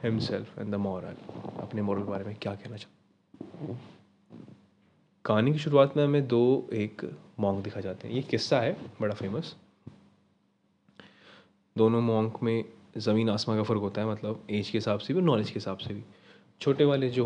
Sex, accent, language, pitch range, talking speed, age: male, native, Hindi, 100-120 Hz, 180 wpm, 20-39